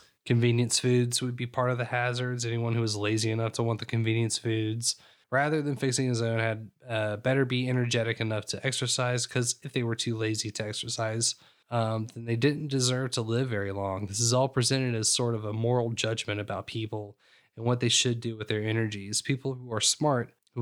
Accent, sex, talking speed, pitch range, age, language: American, male, 210 wpm, 110-125 Hz, 20-39, English